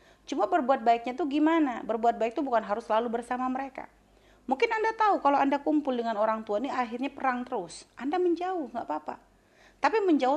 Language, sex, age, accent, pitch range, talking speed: Indonesian, female, 30-49, native, 195-255 Hz, 185 wpm